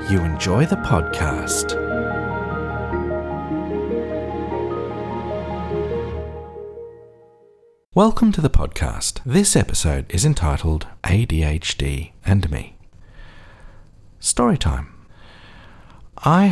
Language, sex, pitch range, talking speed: English, male, 75-105 Hz, 65 wpm